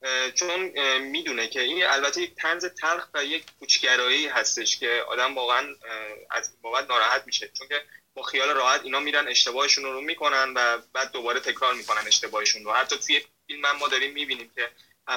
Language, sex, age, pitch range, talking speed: Persian, male, 20-39, 120-165 Hz, 165 wpm